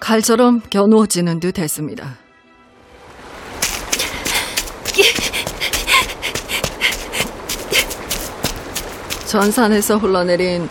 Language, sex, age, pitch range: Korean, female, 40-59, 170-235 Hz